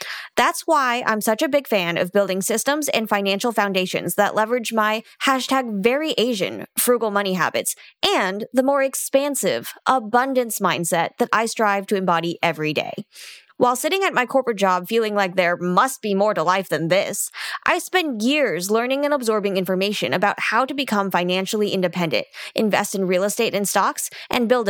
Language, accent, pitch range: English, American, 195-270 Hz